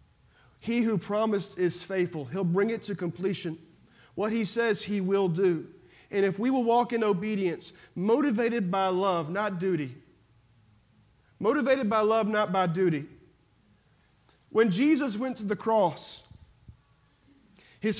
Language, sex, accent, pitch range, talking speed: English, male, American, 160-225 Hz, 135 wpm